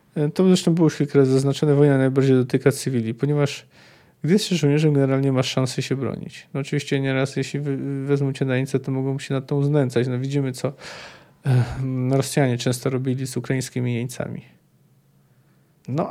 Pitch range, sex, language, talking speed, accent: 130-155 Hz, male, Polish, 160 wpm, native